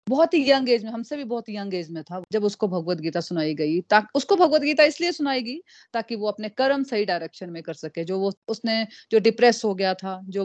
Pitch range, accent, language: 185-235 Hz, native, Hindi